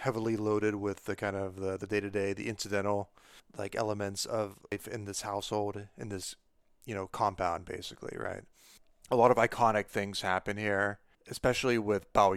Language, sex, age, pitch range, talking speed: English, male, 30-49, 100-110 Hz, 170 wpm